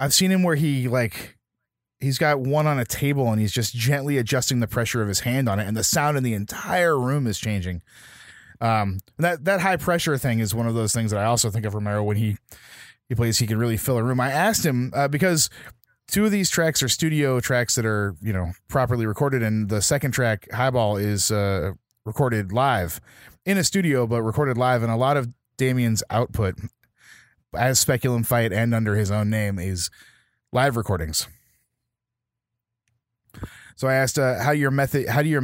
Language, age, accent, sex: English, 20-39, American, male